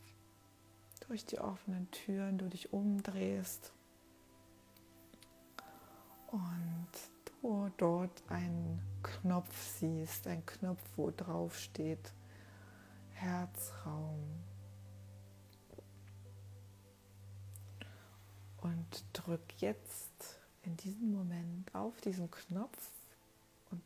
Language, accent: German, German